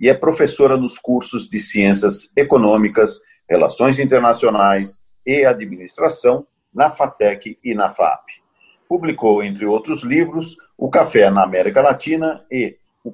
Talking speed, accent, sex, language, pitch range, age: 130 wpm, Brazilian, male, Portuguese, 105-165 Hz, 50-69